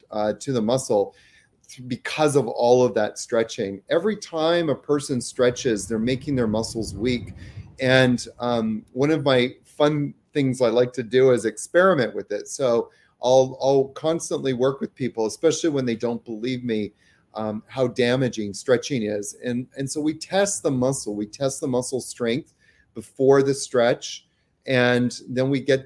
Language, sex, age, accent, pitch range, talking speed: English, male, 30-49, American, 115-140 Hz, 165 wpm